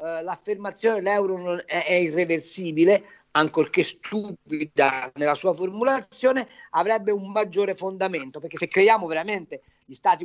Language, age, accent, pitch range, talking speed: Italian, 40-59, native, 180-275 Hz, 110 wpm